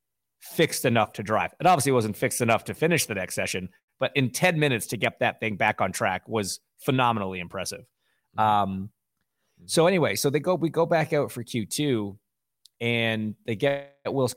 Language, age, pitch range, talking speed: English, 30-49, 105-130 Hz, 185 wpm